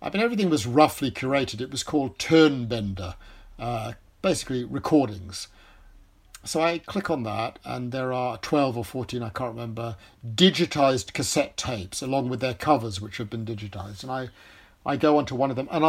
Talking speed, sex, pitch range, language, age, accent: 170 wpm, male, 115-155 Hz, English, 50-69, British